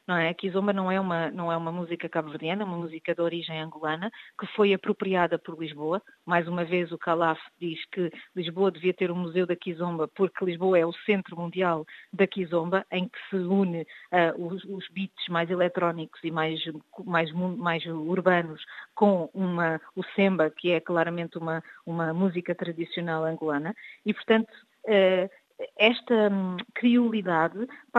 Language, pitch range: Portuguese, 170-210 Hz